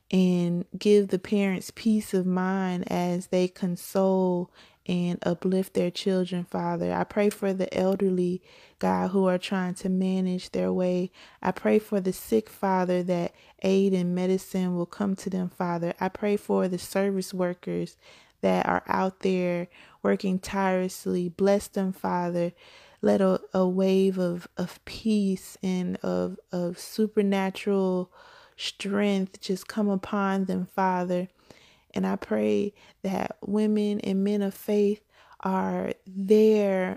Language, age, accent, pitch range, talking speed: English, 20-39, American, 180-200 Hz, 140 wpm